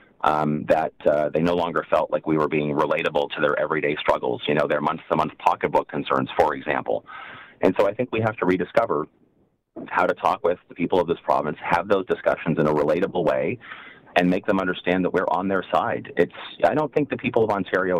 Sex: male